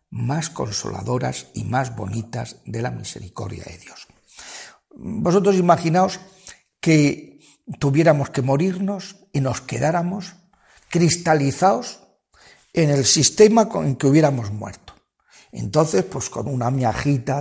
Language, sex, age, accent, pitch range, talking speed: Spanish, male, 50-69, Spanish, 120-180 Hz, 110 wpm